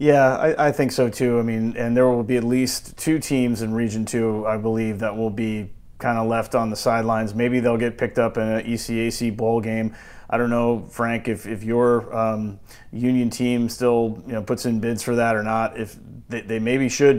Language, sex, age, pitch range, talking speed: English, male, 30-49, 115-130 Hz, 225 wpm